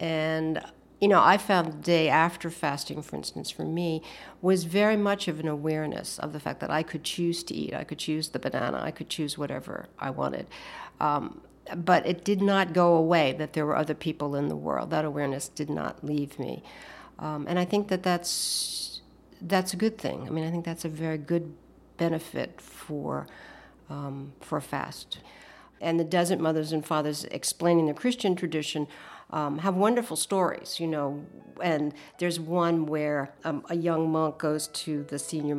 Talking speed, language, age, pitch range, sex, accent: 190 wpm, English, 60-79, 150-175 Hz, female, American